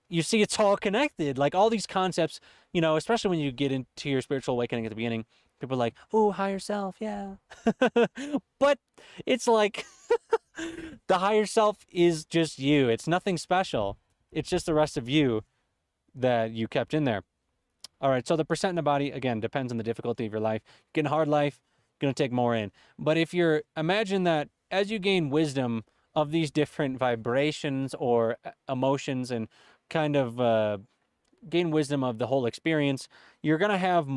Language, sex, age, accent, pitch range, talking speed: English, male, 20-39, American, 130-190 Hz, 185 wpm